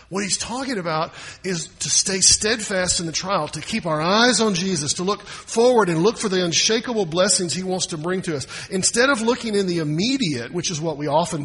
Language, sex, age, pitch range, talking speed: English, male, 40-59, 125-185 Hz, 225 wpm